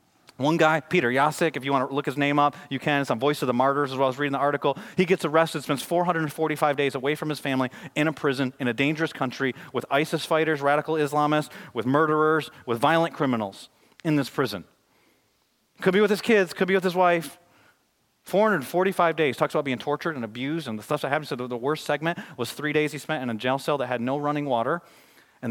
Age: 30-49